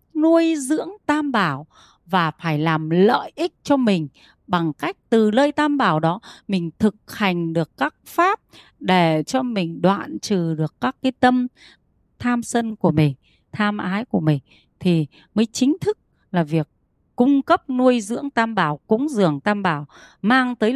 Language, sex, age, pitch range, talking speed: Vietnamese, female, 30-49, 160-235 Hz, 170 wpm